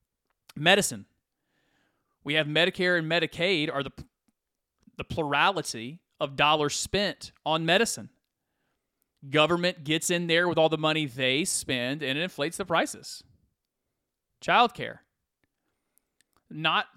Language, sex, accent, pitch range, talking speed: English, male, American, 145-210 Hz, 115 wpm